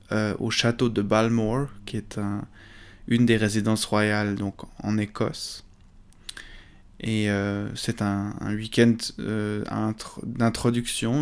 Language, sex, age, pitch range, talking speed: French, male, 20-39, 105-120 Hz, 130 wpm